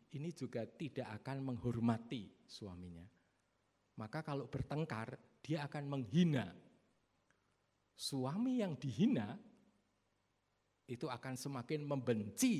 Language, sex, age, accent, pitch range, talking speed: Indonesian, male, 50-69, native, 105-145 Hz, 90 wpm